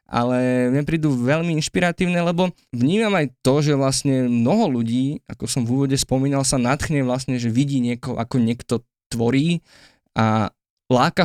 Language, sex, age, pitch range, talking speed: Slovak, male, 20-39, 120-145 Hz, 155 wpm